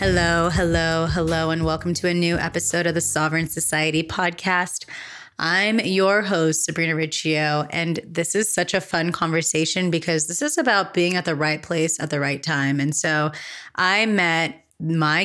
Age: 20-39